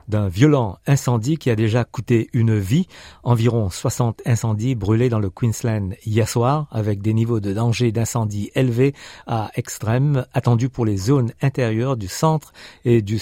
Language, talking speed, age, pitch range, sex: French, 165 wpm, 50-69, 110-135 Hz, male